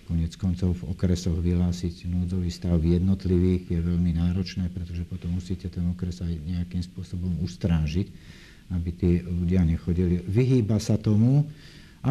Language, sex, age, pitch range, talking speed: Slovak, male, 50-69, 85-100 Hz, 145 wpm